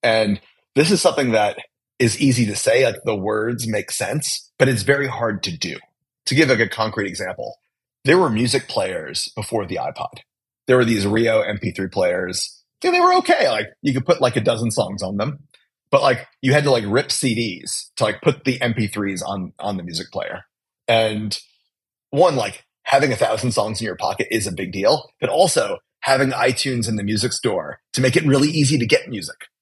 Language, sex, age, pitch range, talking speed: English, male, 30-49, 110-150 Hz, 205 wpm